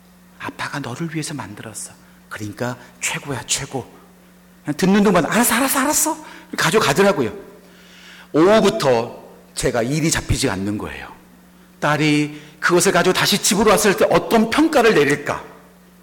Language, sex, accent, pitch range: Korean, male, native, 115-185 Hz